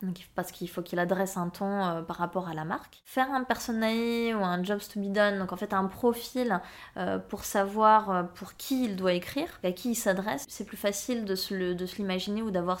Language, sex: French, female